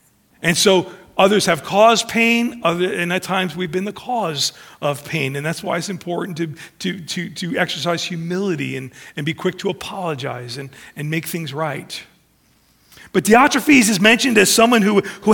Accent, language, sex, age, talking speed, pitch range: American, English, male, 40-59, 175 wpm, 185-250 Hz